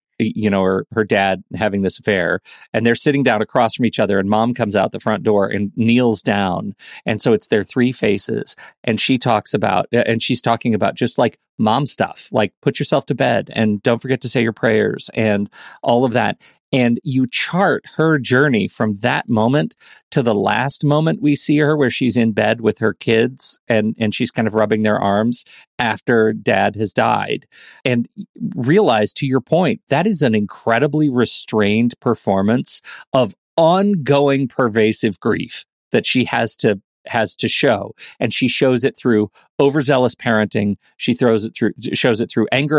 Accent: American